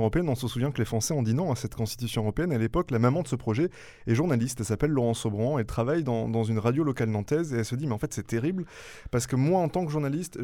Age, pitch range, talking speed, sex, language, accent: 20-39, 115-150 Hz, 295 wpm, male, French, French